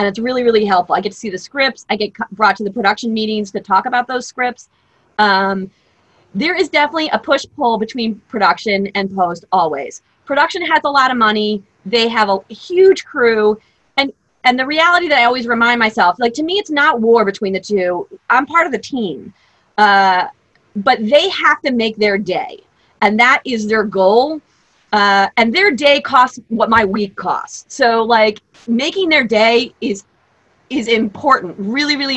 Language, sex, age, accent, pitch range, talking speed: English, female, 30-49, American, 210-290 Hz, 190 wpm